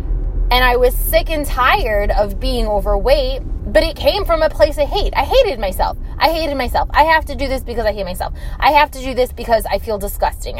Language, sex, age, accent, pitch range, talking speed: English, female, 20-39, American, 195-285 Hz, 230 wpm